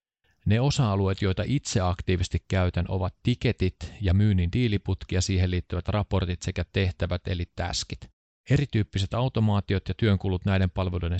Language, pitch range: Finnish, 90-110 Hz